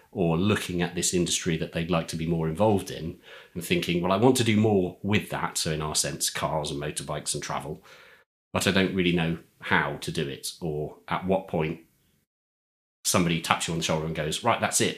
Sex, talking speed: male, 225 wpm